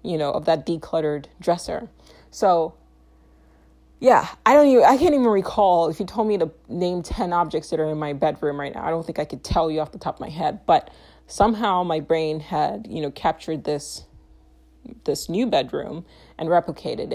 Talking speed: 200 wpm